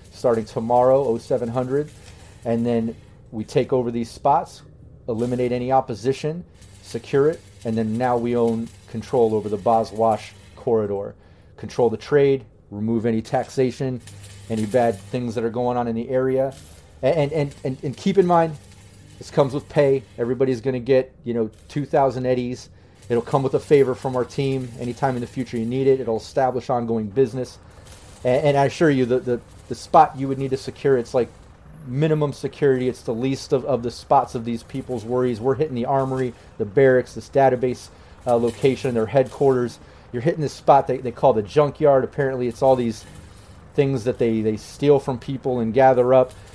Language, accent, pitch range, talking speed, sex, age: English, American, 110-135 Hz, 185 wpm, male, 30-49